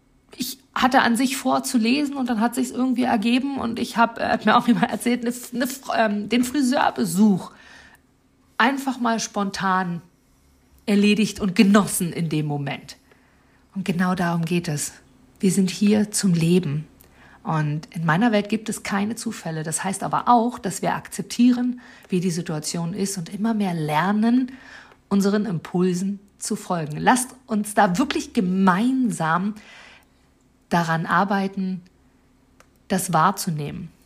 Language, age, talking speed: German, 50-69, 140 wpm